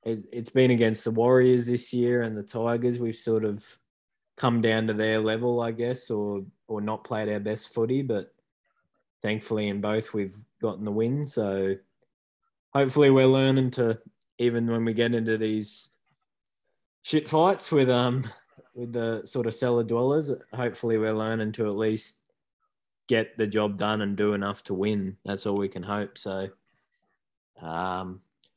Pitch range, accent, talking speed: 105-120 Hz, Australian, 165 wpm